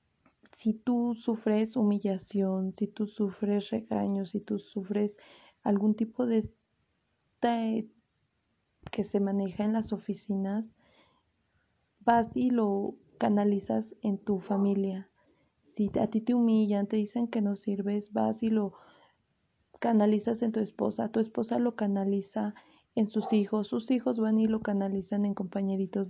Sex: female